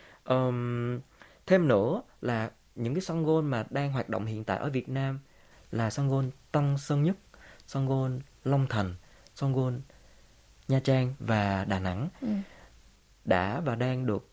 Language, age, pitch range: Vietnamese, 20-39, 110-140 Hz